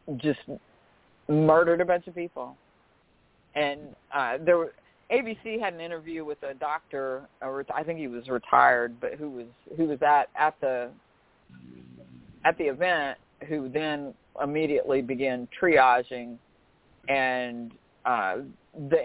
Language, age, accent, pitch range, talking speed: English, 40-59, American, 120-155 Hz, 135 wpm